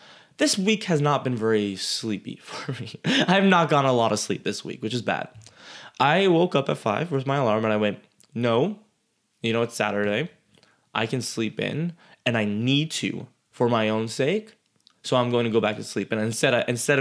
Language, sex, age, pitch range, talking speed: English, male, 20-39, 115-185 Hz, 210 wpm